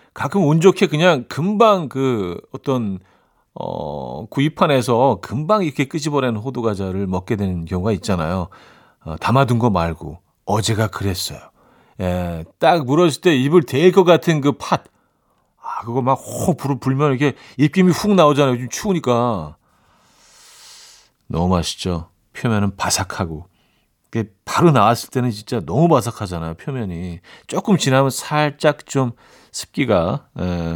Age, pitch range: 40-59, 100-145 Hz